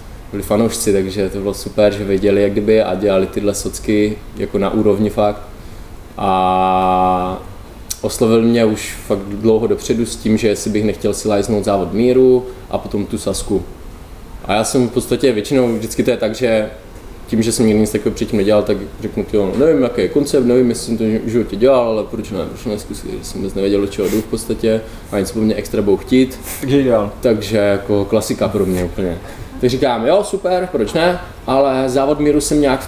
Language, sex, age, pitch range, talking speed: Czech, male, 20-39, 100-125 Hz, 205 wpm